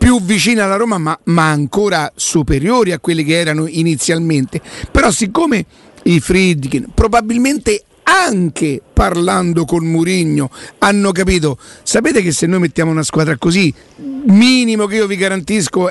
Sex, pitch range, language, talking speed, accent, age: male, 160-185 Hz, Italian, 140 wpm, native, 50-69